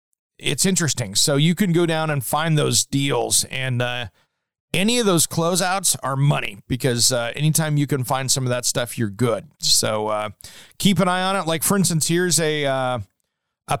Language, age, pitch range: English, 40-59, 125-160 Hz